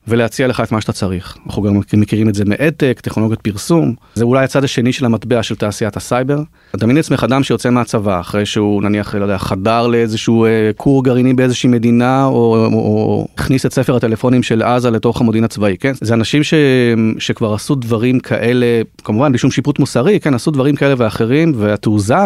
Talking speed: 190 wpm